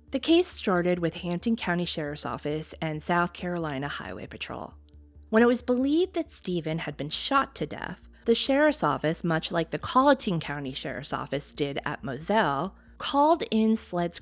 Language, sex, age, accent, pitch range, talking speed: English, female, 20-39, American, 155-225 Hz, 170 wpm